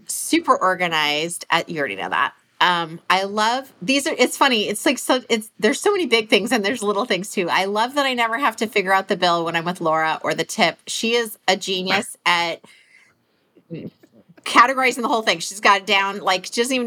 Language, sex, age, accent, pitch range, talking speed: English, female, 30-49, American, 180-225 Hz, 225 wpm